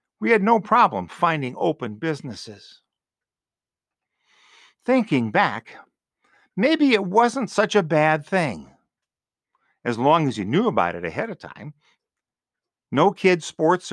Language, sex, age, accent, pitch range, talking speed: English, male, 50-69, American, 135-180 Hz, 125 wpm